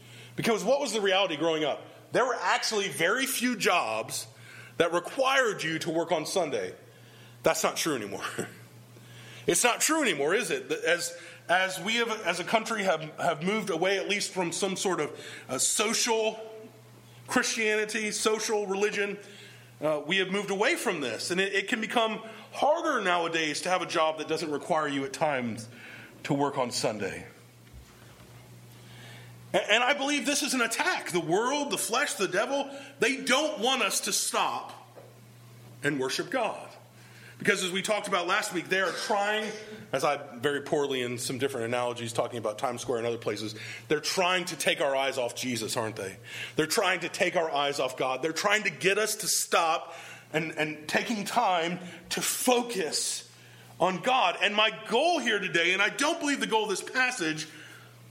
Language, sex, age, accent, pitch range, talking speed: English, male, 30-49, American, 135-215 Hz, 180 wpm